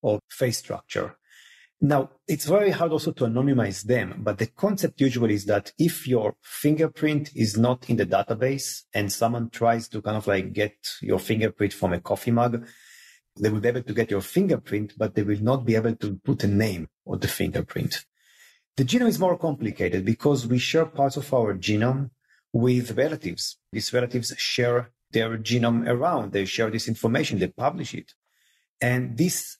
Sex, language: male, English